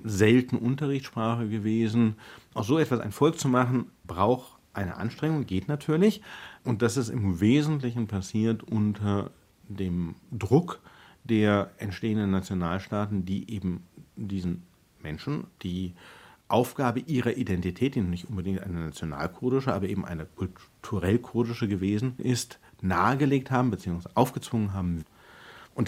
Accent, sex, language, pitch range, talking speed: German, male, German, 95-135 Hz, 120 wpm